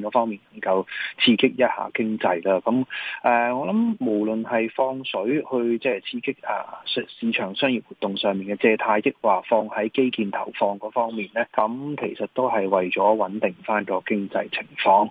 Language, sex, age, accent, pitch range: Chinese, male, 20-39, native, 105-125 Hz